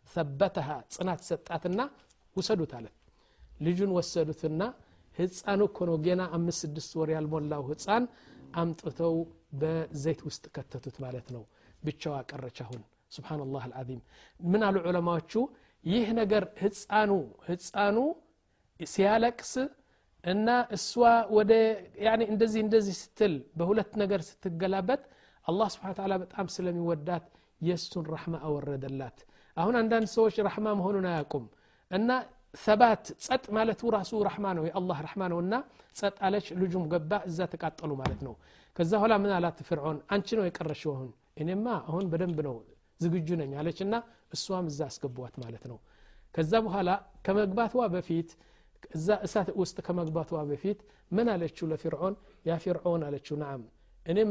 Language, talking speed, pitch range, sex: Amharic, 115 wpm, 155-205 Hz, male